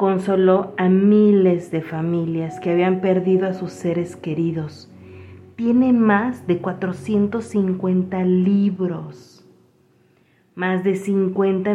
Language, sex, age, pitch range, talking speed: Spanish, female, 40-59, 160-195 Hz, 100 wpm